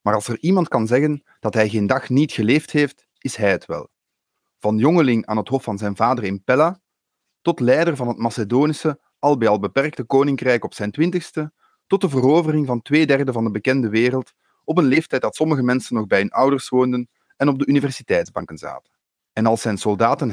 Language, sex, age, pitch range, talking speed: English, male, 30-49, 115-145 Hz, 205 wpm